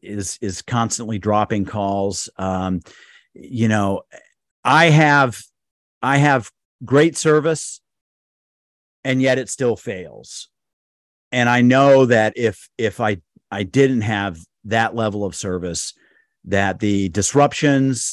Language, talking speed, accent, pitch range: English, 120 wpm, American, 95-125 Hz